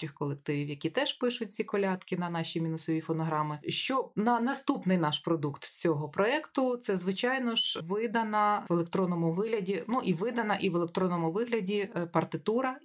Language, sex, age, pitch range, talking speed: Ukrainian, female, 20-39, 165-220 Hz, 155 wpm